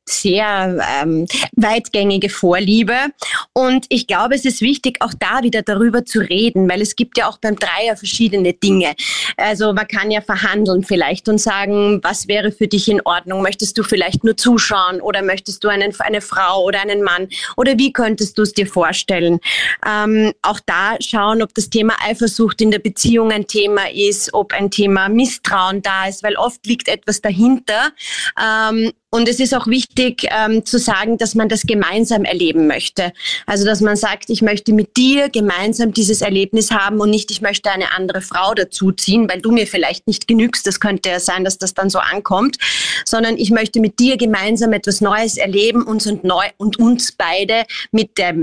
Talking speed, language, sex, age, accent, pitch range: 190 wpm, German, female, 30-49, German, 195-225 Hz